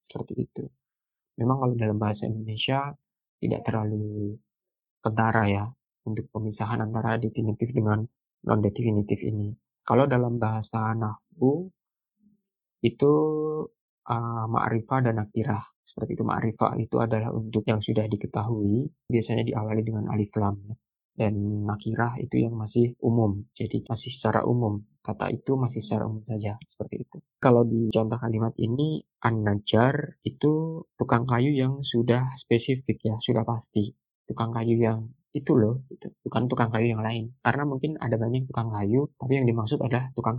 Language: Indonesian